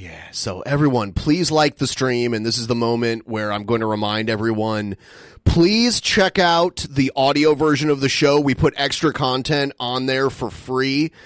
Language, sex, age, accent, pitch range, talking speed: English, male, 30-49, American, 125-155 Hz, 185 wpm